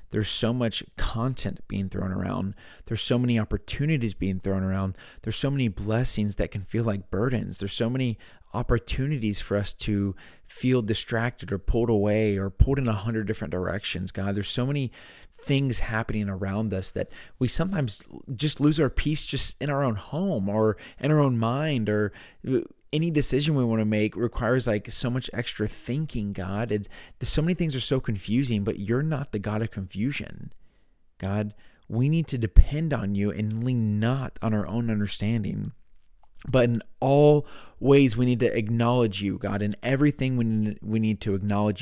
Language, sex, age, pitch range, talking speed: English, male, 30-49, 100-125 Hz, 180 wpm